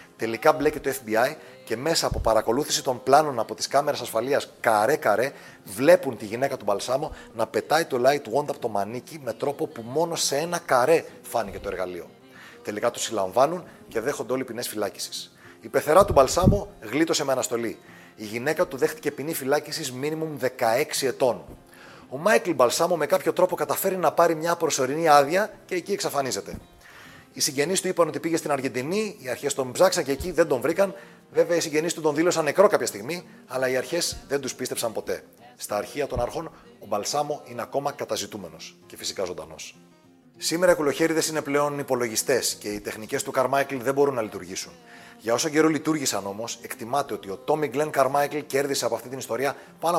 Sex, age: male, 30-49